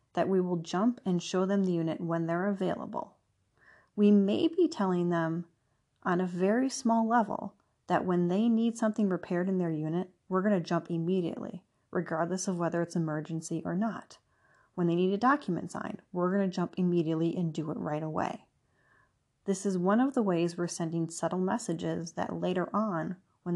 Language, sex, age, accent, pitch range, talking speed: English, female, 30-49, American, 170-205 Hz, 185 wpm